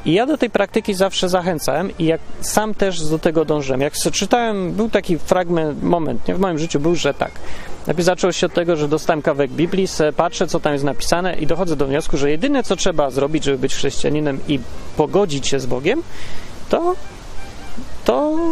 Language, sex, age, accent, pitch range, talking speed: Polish, male, 30-49, native, 145-195 Hz, 195 wpm